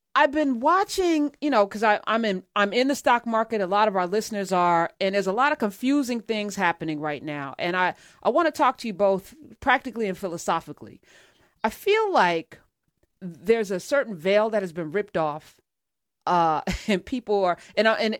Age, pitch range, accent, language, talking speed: 40-59, 190-250 Hz, American, English, 195 wpm